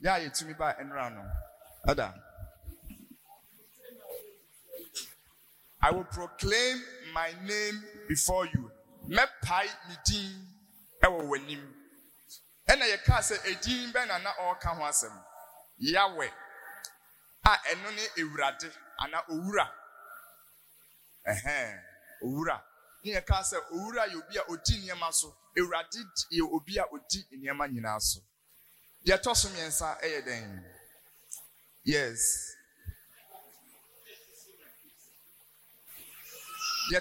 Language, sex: English, male